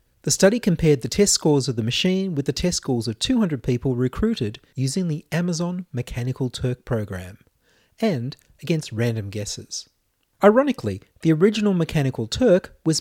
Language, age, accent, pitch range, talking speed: English, 30-49, Australian, 120-180 Hz, 150 wpm